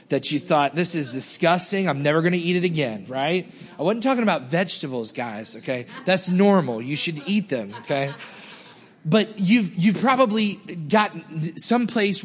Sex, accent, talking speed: male, American, 165 wpm